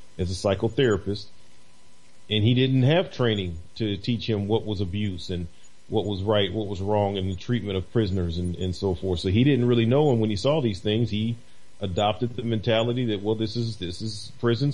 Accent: American